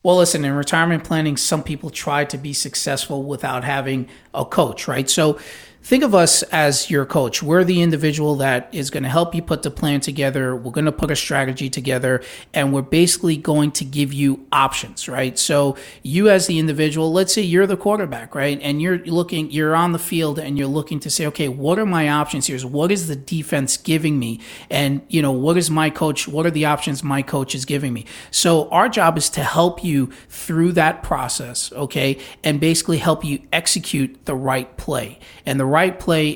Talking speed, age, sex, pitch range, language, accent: 210 wpm, 30-49, male, 140-165 Hz, English, American